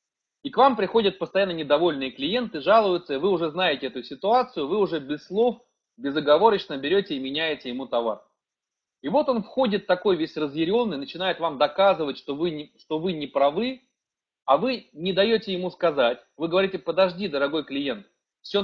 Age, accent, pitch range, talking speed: 30-49, native, 160-200 Hz, 165 wpm